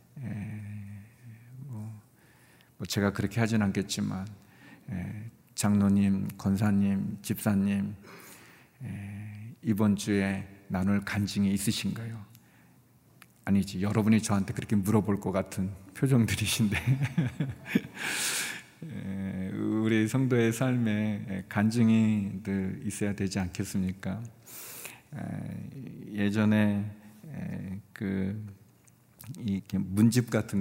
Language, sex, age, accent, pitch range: Korean, male, 40-59, native, 95-115 Hz